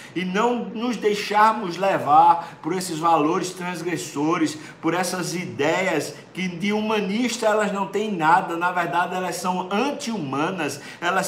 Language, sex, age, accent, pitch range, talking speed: Portuguese, male, 60-79, Brazilian, 160-195 Hz, 135 wpm